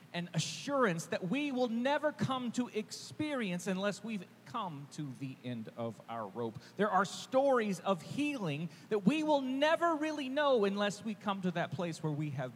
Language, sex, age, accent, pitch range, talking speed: English, male, 40-59, American, 115-180 Hz, 180 wpm